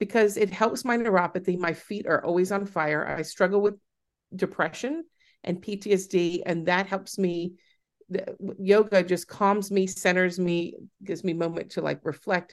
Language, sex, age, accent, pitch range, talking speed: English, female, 50-69, American, 185-220 Hz, 165 wpm